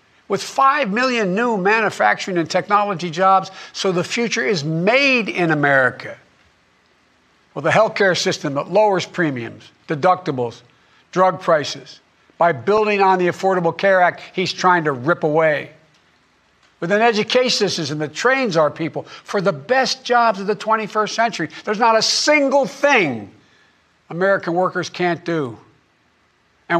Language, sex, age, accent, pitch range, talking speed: English, male, 60-79, American, 150-205 Hz, 140 wpm